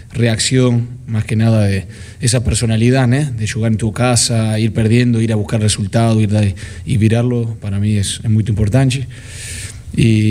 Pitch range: 105-115 Hz